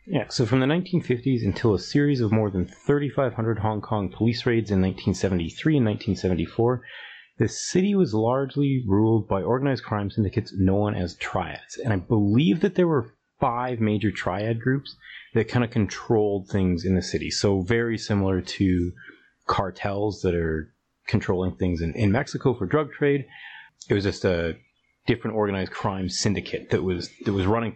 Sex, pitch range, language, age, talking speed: male, 100-135 Hz, English, 30-49, 170 wpm